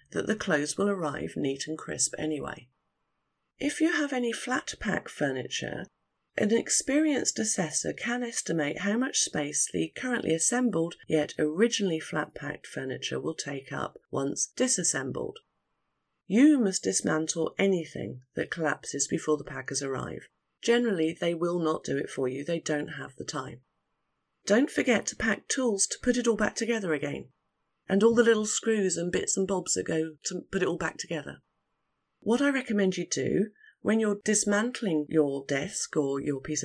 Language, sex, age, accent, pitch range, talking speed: English, female, 40-59, British, 155-225 Hz, 165 wpm